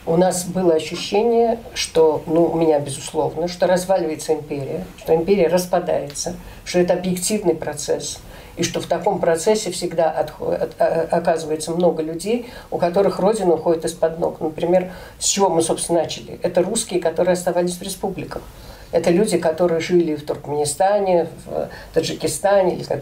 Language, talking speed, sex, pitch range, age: Russian, 155 wpm, female, 160-190 Hz, 50-69